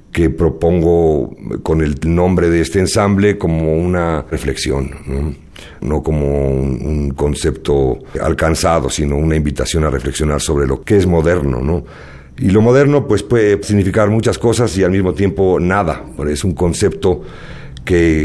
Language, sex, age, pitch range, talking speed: Spanish, male, 50-69, 80-100 Hz, 150 wpm